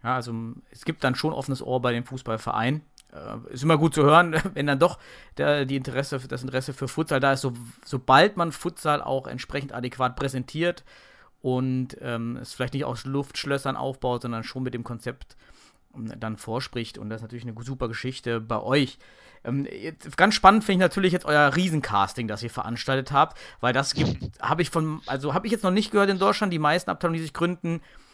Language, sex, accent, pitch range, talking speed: German, male, German, 130-170 Hz, 200 wpm